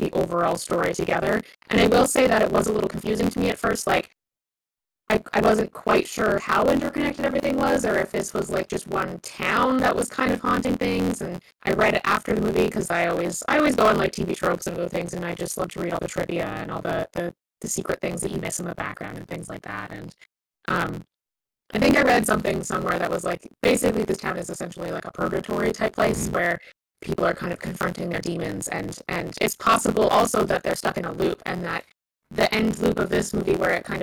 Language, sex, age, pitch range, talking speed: English, female, 20-39, 180-235 Hz, 245 wpm